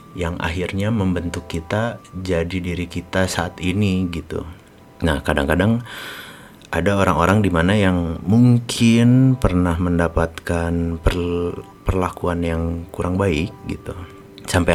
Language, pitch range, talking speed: Indonesian, 85-100 Hz, 110 wpm